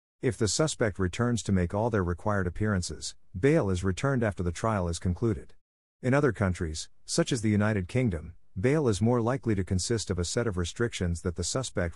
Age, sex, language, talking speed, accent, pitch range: 50-69, male, English, 200 wpm, American, 90-115 Hz